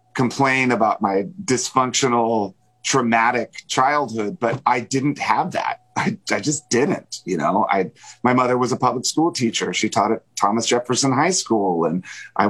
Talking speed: 165 wpm